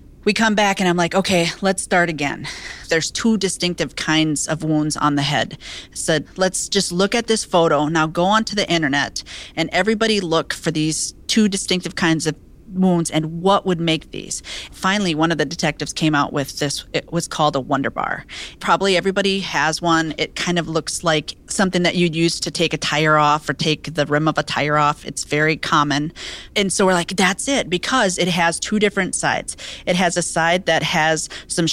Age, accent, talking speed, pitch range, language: 40-59, American, 210 wpm, 155-185 Hz, English